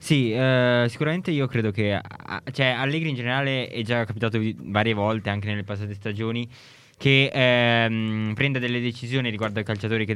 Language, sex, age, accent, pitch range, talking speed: Italian, male, 20-39, native, 100-115 Hz, 170 wpm